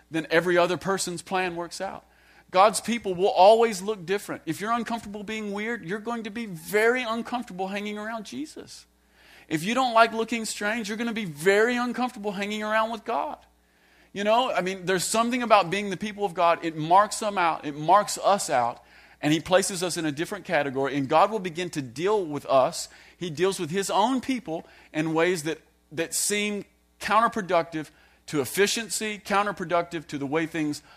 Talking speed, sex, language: 190 wpm, male, English